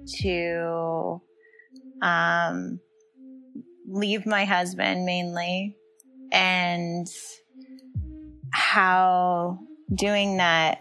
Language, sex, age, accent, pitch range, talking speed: English, female, 20-39, American, 165-245 Hz, 55 wpm